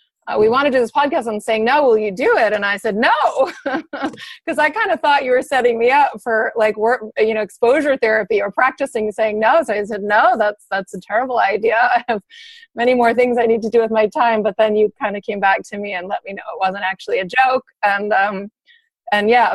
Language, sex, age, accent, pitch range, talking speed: English, female, 30-49, American, 195-245 Hz, 250 wpm